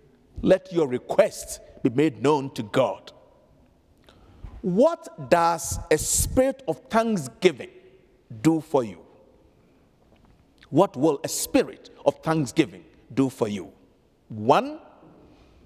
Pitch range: 160-270 Hz